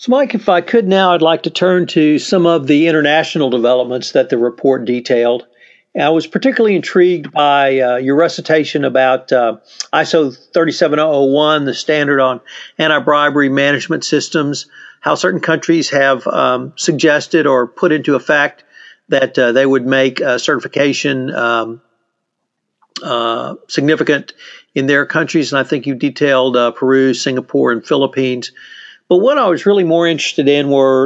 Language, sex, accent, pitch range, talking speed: English, male, American, 130-165 Hz, 155 wpm